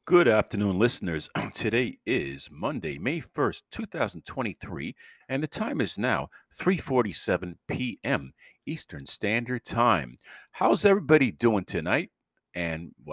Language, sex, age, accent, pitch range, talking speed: English, male, 50-69, American, 80-120 Hz, 110 wpm